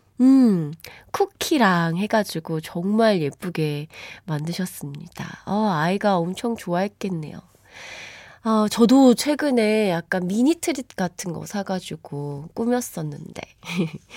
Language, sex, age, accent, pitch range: Korean, female, 20-39, native, 175-240 Hz